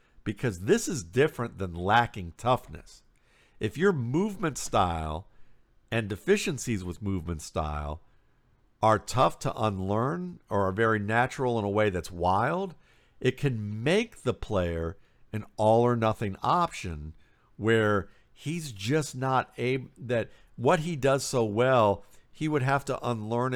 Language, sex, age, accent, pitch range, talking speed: English, male, 50-69, American, 105-135 Hz, 140 wpm